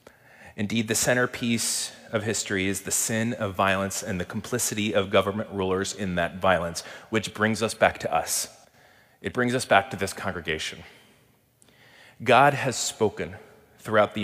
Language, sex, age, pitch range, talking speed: English, male, 30-49, 105-125 Hz, 155 wpm